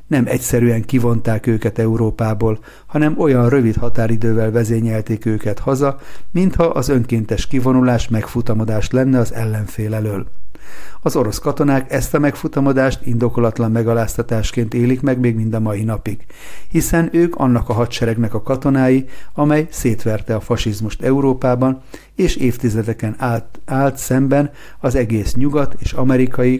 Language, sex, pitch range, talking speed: Hungarian, male, 115-135 Hz, 130 wpm